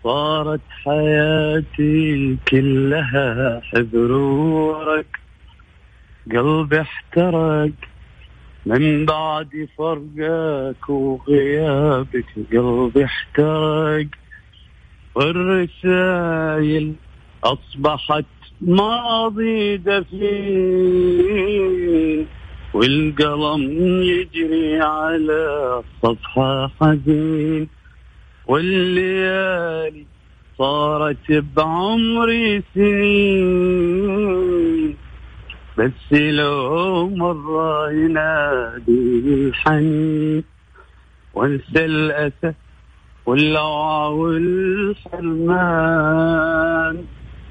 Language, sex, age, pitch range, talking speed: Arabic, male, 50-69, 150-180 Hz, 45 wpm